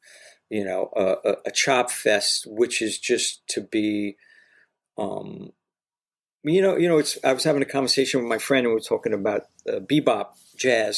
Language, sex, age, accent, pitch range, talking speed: English, male, 50-69, American, 110-155 Hz, 185 wpm